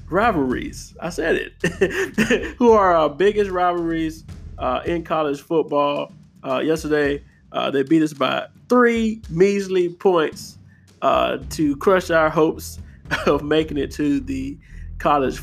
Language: English